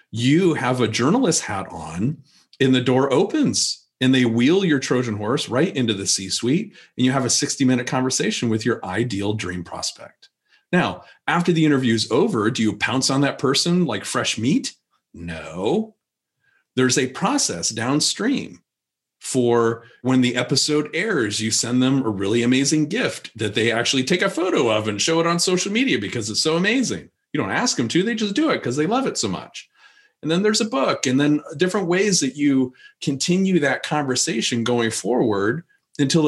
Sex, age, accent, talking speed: male, 40-59, American, 185 wpm